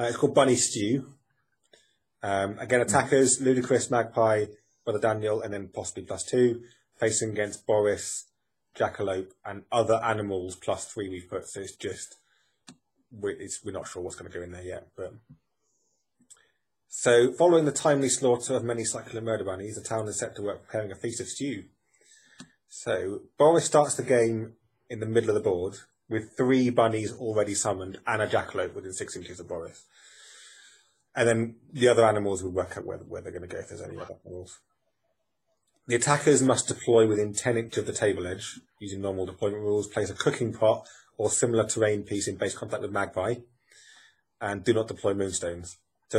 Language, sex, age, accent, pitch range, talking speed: English, male, 30-49, British, 105-125 Hz, 185 wpm